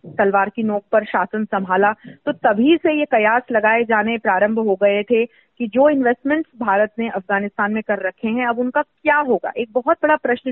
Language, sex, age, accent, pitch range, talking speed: Hindi, female, 40-59, native, 225-300 Hz, 200 wpm